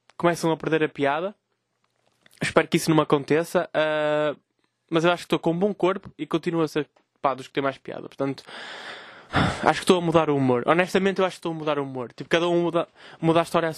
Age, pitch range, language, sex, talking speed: 20-39, 145-215 Hz, Portuguese, male, 245 wpm